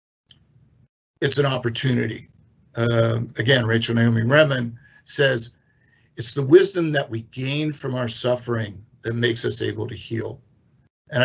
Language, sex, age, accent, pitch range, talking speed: English, male, 50-69, American, 115-135 Hz, 135 wpm